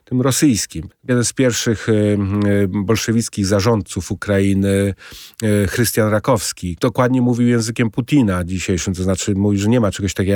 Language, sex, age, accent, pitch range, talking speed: Polish, male, 40-59, native, 100-120 Hz, 135 wpm